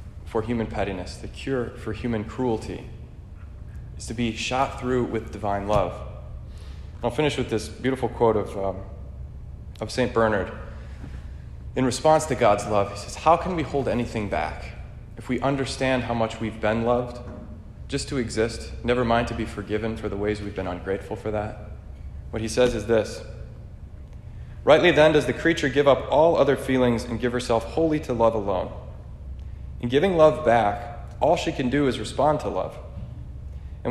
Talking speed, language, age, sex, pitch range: 175 wpm, English, 20-39, male, 100-130 Hz